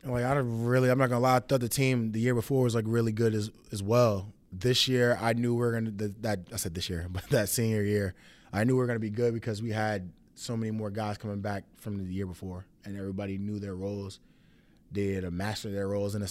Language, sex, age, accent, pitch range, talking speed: English, male, 20-39, American, 95-115 Hz, 270 wpm